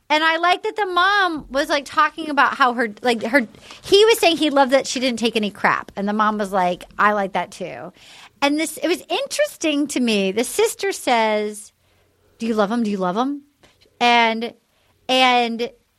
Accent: American